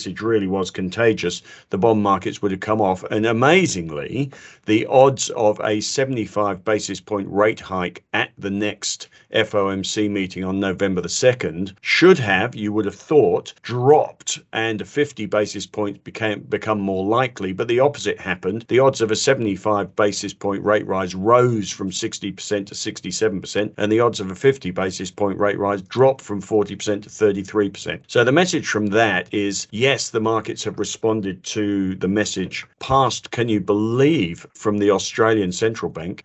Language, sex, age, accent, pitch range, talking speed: English, male, 50-69, British, 95-115 Hz, 170 wpm